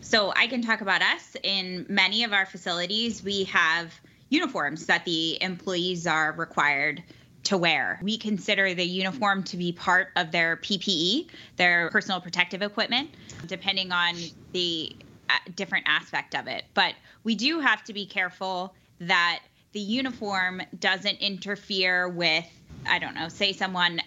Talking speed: 150 wpm